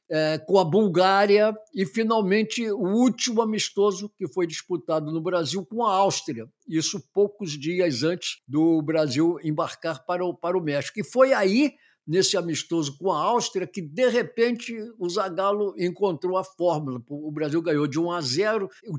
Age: 60-79